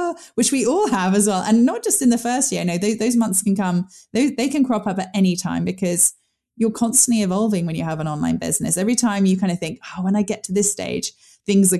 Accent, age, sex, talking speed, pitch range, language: British, 20-39, female, 265 wpm, 165-215 Hz, English